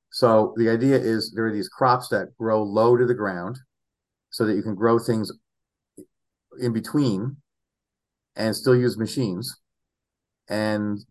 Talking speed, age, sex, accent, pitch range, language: 145 wpm, 50-69, male, American, 105-120 Hz, English